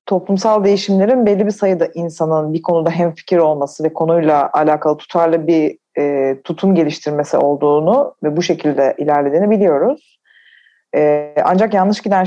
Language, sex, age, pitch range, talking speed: Turkish, female, 30-49, 145-185 Hz, 140 wpm